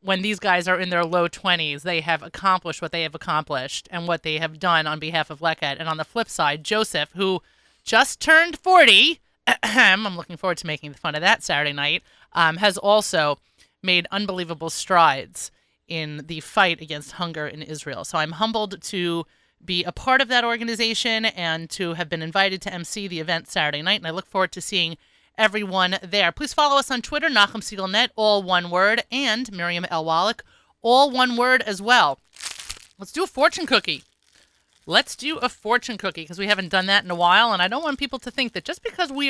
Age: 30-49